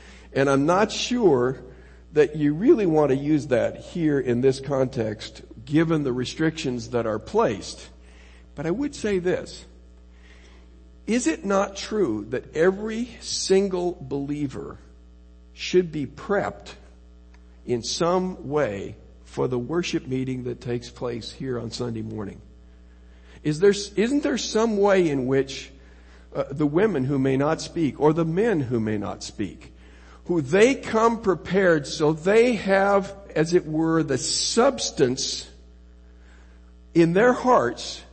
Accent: American